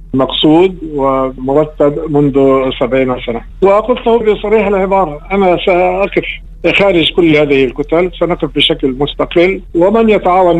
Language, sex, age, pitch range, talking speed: Arabic, male, 50-69, 135-160 Hz, 110 wpm